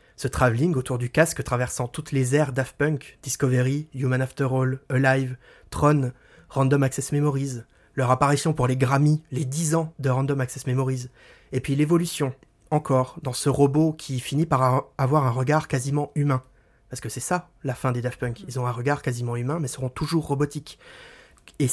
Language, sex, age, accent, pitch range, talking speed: French, male, 30-49, French, 125-150 Hz, 185 wpm